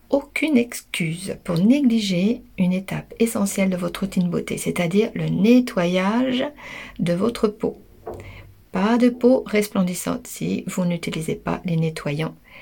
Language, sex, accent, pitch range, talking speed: French, female, French, 165-210 Hz, 130 wpm